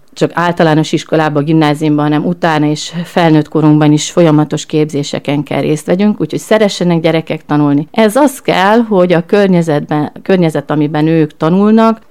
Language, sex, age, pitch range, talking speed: Hungarian, female, 40-59, 155-190 Hz, 140 wpm